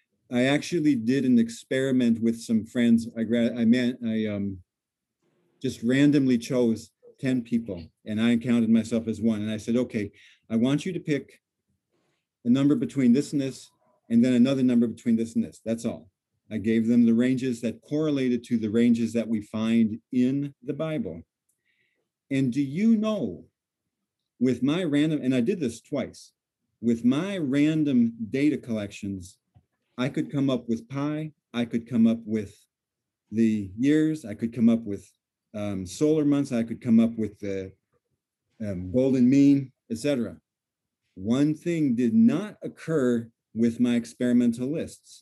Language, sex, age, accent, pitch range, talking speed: English, male, 50-69, American, 115-145 Hz, 160 wpm